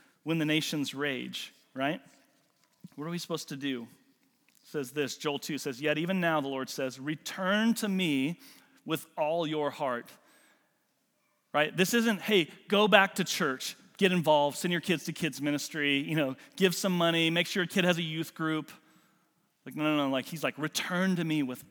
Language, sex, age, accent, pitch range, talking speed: English, male, 40-59, American, 145-195 Hz, 195 wpm